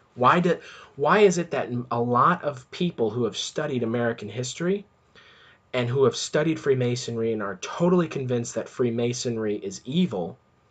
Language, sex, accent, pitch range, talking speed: English, male, American, 110-155 Hz, 155 wpm